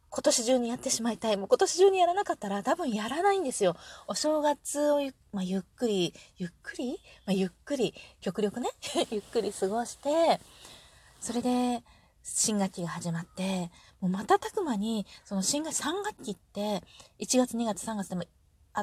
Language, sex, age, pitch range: Japanese, female, 20-39, 175-245 Hz